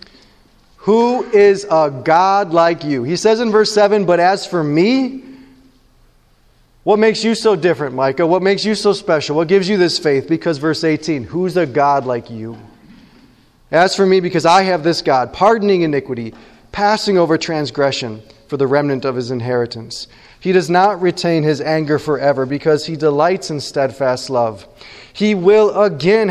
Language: English